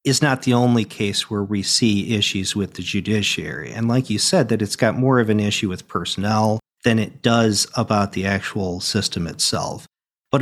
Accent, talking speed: American, 195 wpm